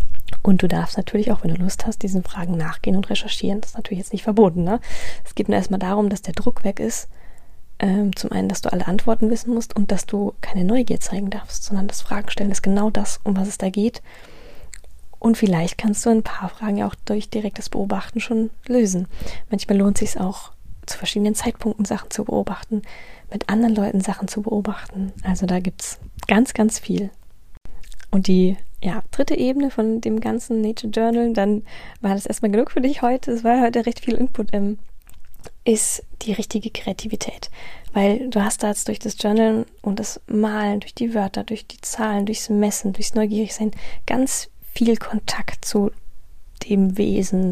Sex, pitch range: female, 195-225 Hz